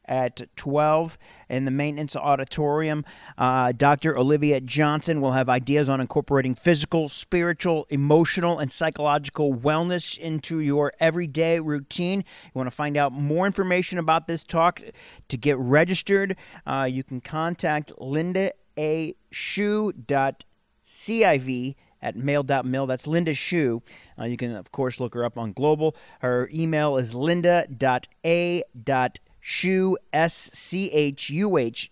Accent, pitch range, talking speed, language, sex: American, 135-175 Hz, 125 wpm, English, male